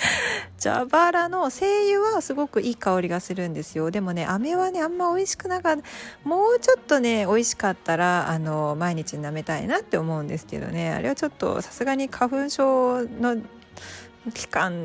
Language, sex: Japanese, female